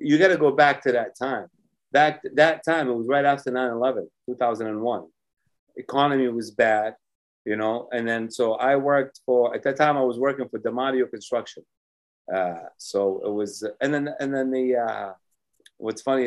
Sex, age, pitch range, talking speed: male, 30-49, 115-150 Hz, 190 wpm